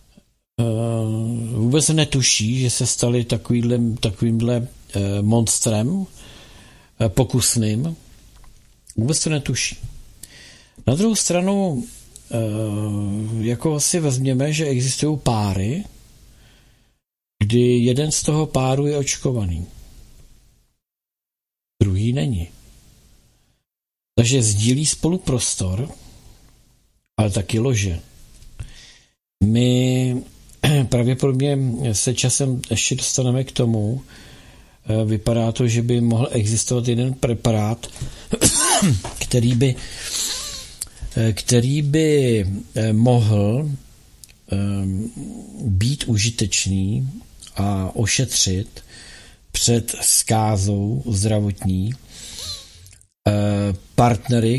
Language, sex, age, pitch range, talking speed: Czech, male, 50-69, 105-130 Hz, 75 wpm